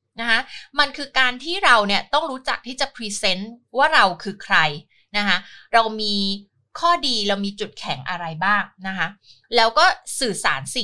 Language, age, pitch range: Thai, 20-39, 175-245 Hz